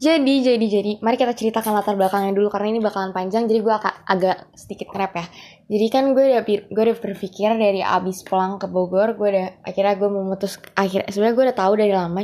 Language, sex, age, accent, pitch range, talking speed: Indonesian, female, 20-39, native, 180-210 Hz, 215 wpm